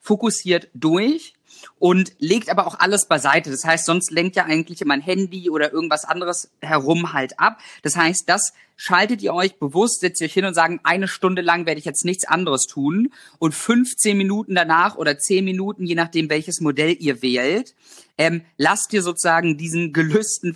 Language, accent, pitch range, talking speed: German, German, 145-180 Hz, 180 wpm